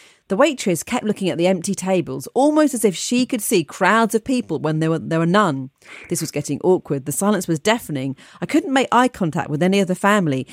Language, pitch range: English, 160-235 Hz